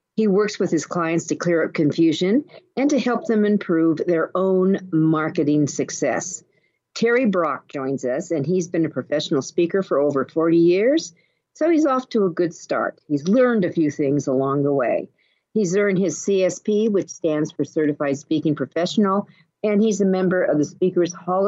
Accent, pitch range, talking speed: American, 155-215 Hz, 180 wpm